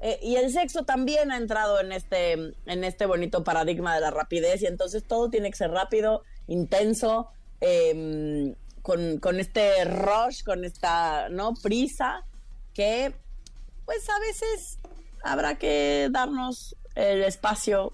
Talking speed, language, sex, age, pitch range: 135 wpm, Spanish, female, 30-49, 180-240 Hz